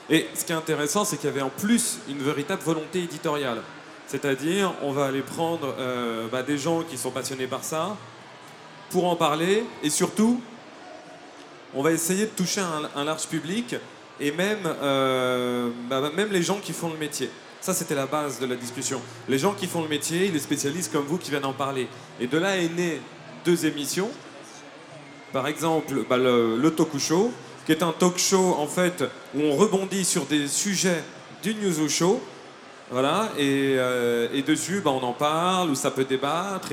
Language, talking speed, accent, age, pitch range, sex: French, 195 wpm, French, 30-49, 130-175 Hz, male